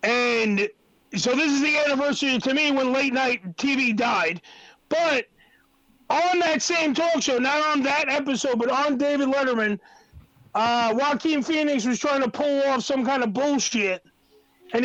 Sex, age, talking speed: male, 40-59, 160 wpm